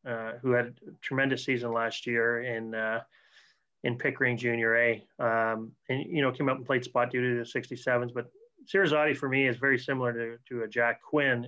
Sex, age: male, 30-49